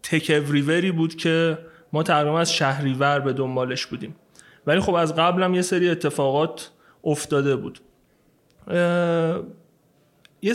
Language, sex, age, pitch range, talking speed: Persian, male, 30-49, 145-190 Hz, 125 wpm